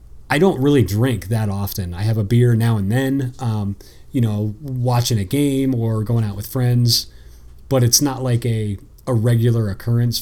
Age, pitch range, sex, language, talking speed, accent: 30-49, 105-125 Hz, male, English, 190 wpm, American